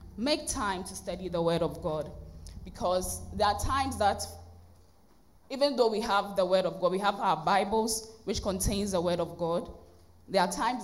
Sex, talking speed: female, 190 wpm